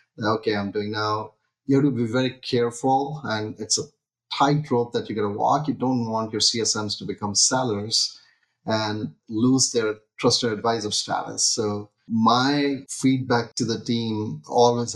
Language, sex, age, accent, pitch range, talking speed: English, male, 30-49, Indian, 110-130 Hz, 160 wpm